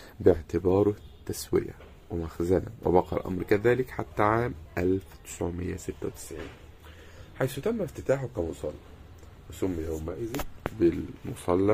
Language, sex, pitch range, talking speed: Arabic, male, 85-120 Hz, 80 wpm